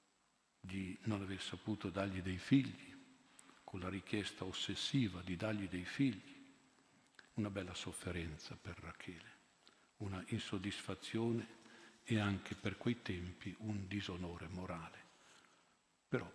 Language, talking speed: Italian, 115 wpm